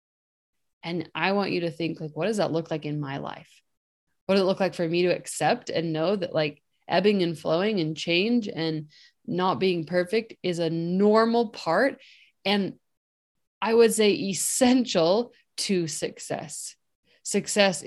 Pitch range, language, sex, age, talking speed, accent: 160-190 Hz, English, female, 20-39, 165 wpm, American